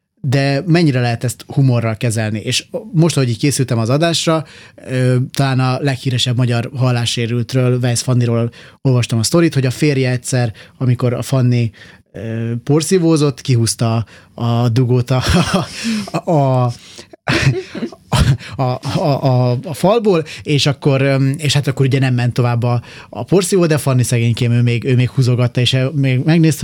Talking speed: 150 wpm